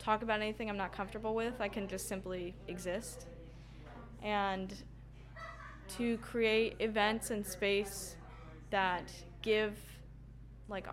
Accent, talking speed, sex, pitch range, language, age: American, 115 wpm, female, 185-225 Hz, English, 10-29